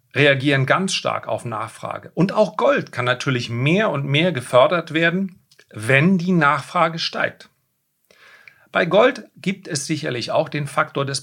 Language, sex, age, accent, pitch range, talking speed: German, male, 40-59, German, 130-165 Hz, 150 wpm